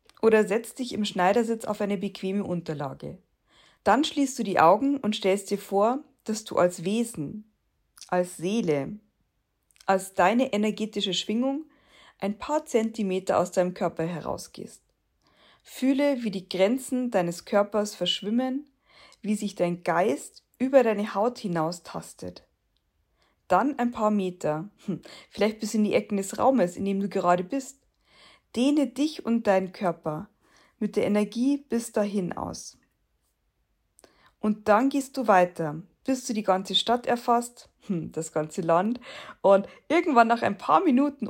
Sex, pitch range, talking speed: female, 185-240 Hz, 140 wpm